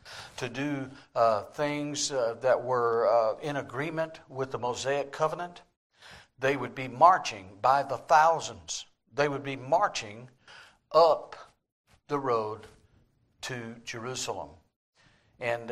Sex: male